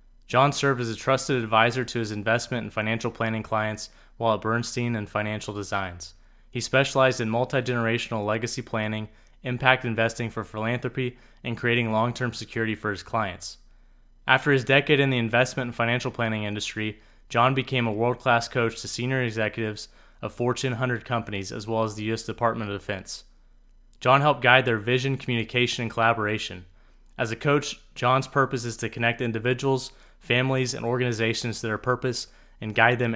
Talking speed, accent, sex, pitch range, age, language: 165 wpm, American, male, 110-125 Hz, 20-39, English